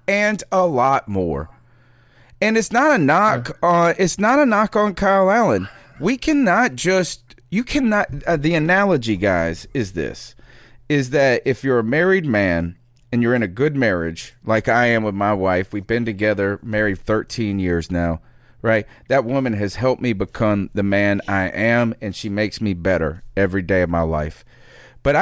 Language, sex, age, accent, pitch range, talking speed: English, male, 40-59, American, 110-155 Hz, 180 wpm